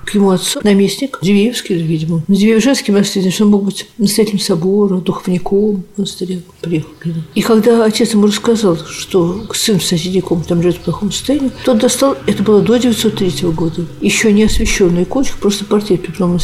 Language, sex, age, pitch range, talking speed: Russian, female, 50-69, 185-220 Hz, 160 wpm